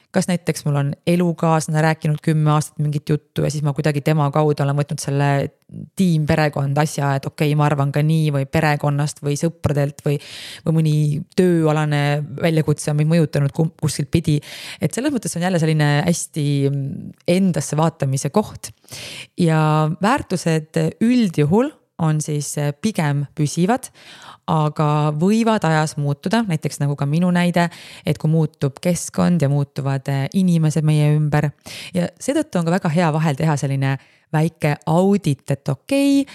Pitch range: 145-175 Hz